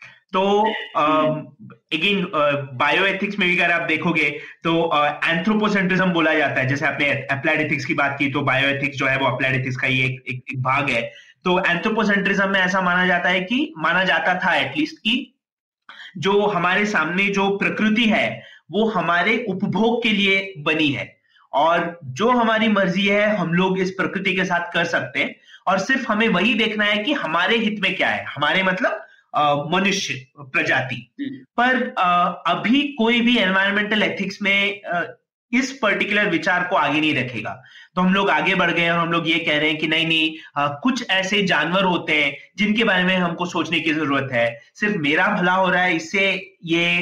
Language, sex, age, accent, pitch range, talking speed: Hindi, male, 30-49, native, 155-205 Hz, 175 wpm